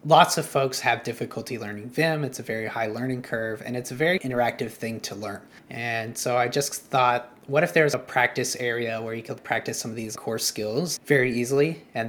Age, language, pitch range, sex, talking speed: 20-39, English, 120-145 Hz, male, 220 wpm